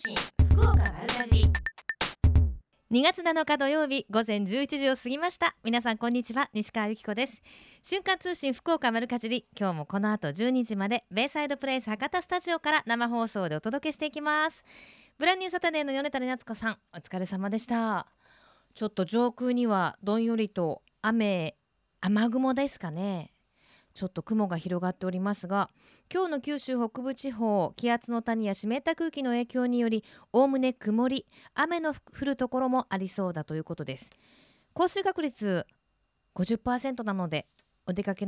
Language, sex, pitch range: Japanese, female, 200-280 Hz